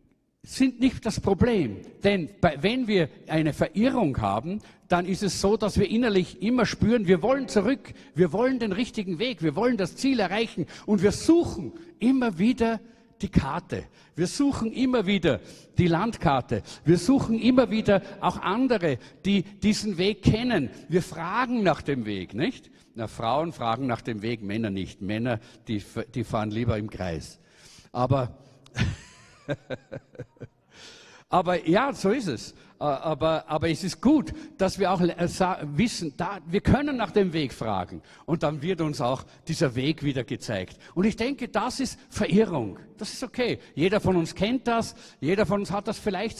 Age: 50-69